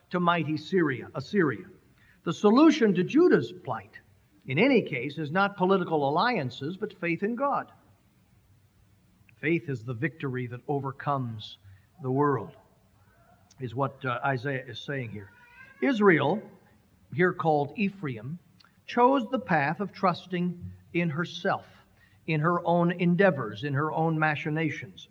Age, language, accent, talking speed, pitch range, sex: 50-69, English, American, 125 wpm, 140-185 Hz, male